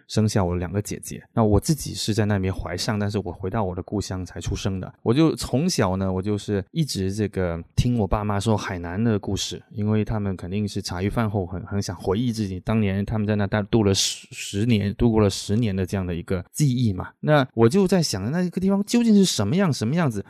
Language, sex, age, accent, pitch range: English, male, 20-39, Chinese, 95-120 Hz